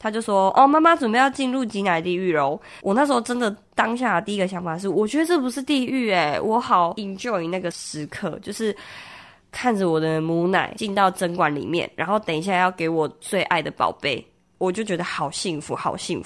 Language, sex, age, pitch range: Chinese, female, 20-39, 160-205 Hz